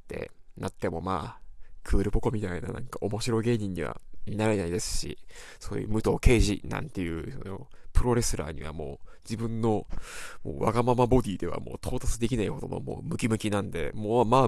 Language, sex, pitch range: Japanese, male, 100-120 Hz